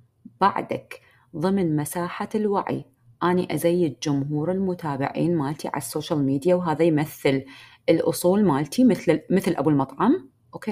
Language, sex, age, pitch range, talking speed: Arabic, female, 30-49, 140-210 Hz, 120 wpm